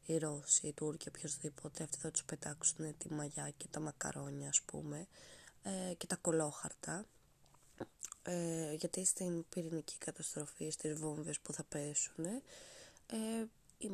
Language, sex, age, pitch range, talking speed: Greek, female, 20-39, 155-190 Hz, 140 wpm